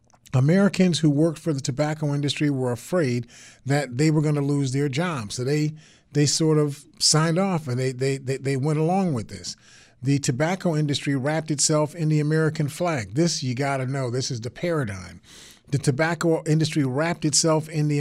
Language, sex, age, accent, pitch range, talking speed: English, male, 40-59, American, 135-155 Hz, 195 wpm